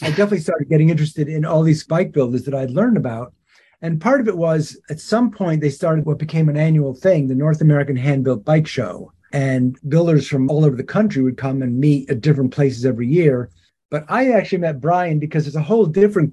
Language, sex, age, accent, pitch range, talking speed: English, male, 50-69, American, 135-155 Hz, 225 wpm